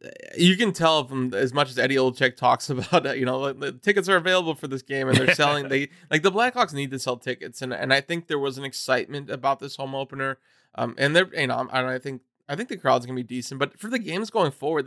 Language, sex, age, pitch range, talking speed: English, male, 20-39, 130-150 Hz, 275 wpm